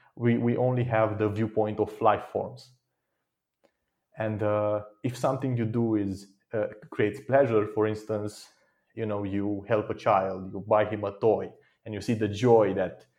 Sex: male